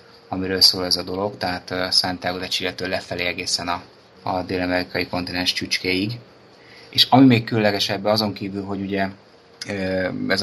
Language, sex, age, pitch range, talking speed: Hungarian, male, 20-39, 90-100 Hz, 145 wpm